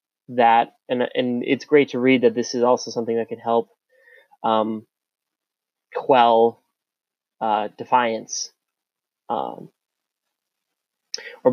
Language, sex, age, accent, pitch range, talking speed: English, male, 20-39, American, 115-145 Hz, 110 wpm